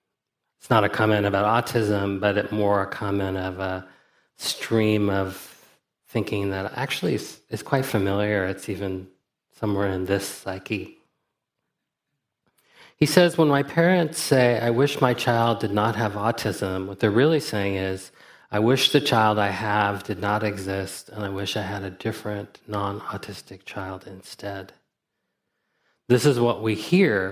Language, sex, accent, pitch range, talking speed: English, male, American, 95-110 Hz, 155 wpm